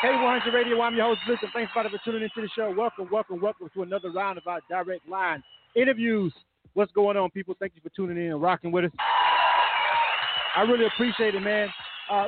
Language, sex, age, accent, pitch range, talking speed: English, male, 30-49, American, 175-215 Hz, 215 wpm